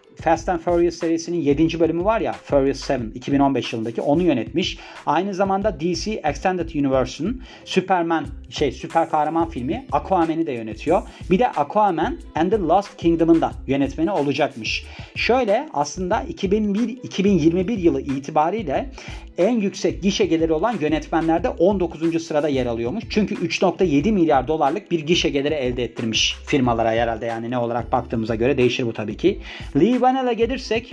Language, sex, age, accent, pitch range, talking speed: Turkish, male, 40-59, native, 135-190 Hz, 145 wpm